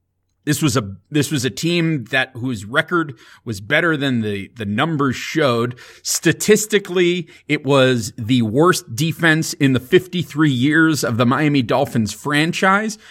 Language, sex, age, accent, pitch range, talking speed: English, male, 30-49, American, 120-160 Hz, 145 wpm